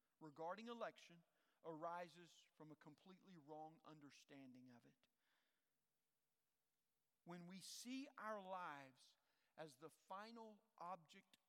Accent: American